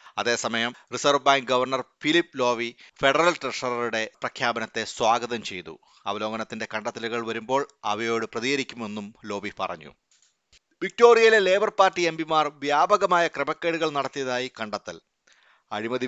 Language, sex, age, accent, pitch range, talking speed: Malayalam, male, 30-49, native, 115-150 Hz, 105 wpm